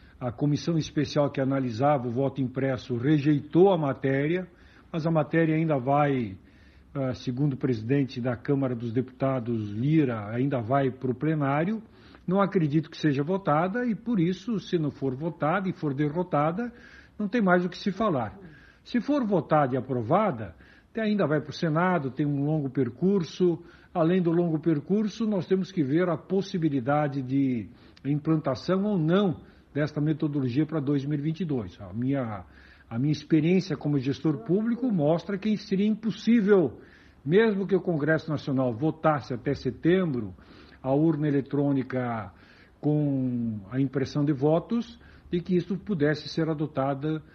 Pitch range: 135-175 Hz